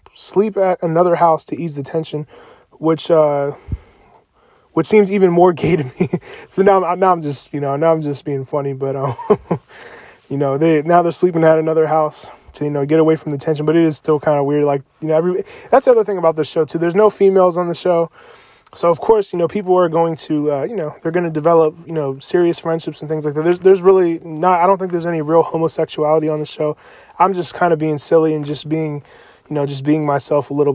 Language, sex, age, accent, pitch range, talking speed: English, male, 20-39, American, 150-175 Hz, 250 wpm